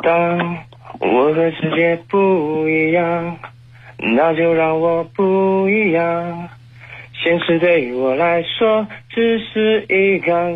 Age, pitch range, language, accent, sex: 30-49, 170-220 Hz, Chinese, native, male